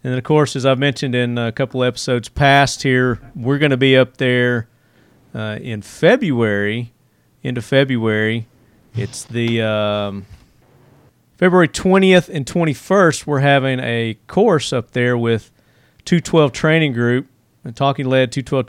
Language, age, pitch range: English, 40-59, 115-135 Hz